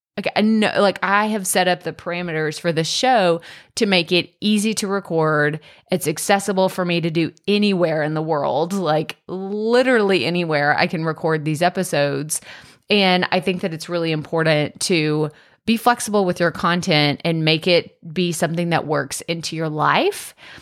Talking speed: 175 wpm